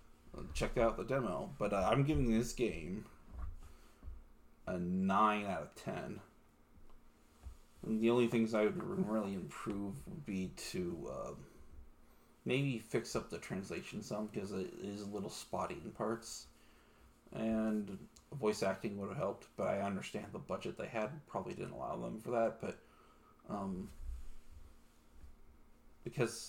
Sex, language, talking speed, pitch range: male, English, 140 wpm, 80-115 Hz